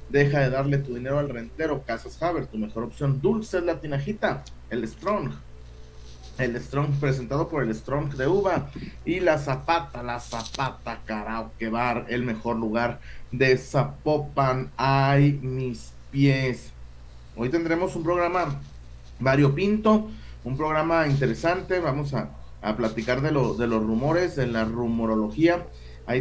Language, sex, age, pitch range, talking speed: Spanish, male, 40-59, 115-160 Hz, 145 wpm